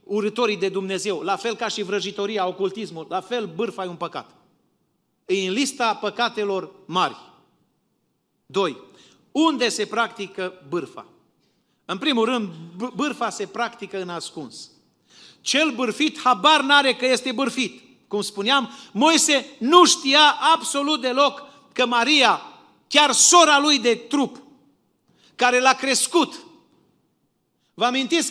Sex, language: male, Romanian